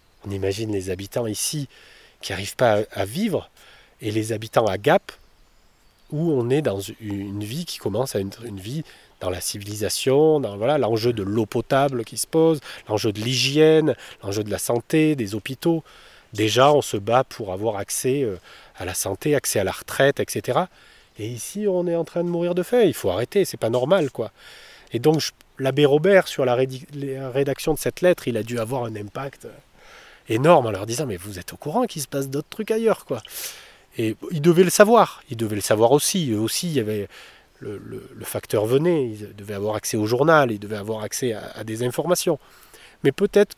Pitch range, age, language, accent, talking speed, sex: 110-155 Hz, 30-49, French, French, 210 wpm, male